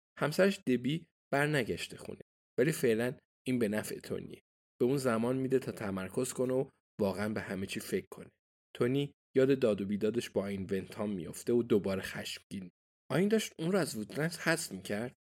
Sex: male